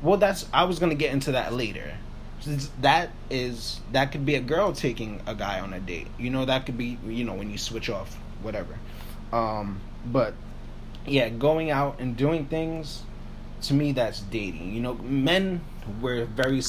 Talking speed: 185 wpm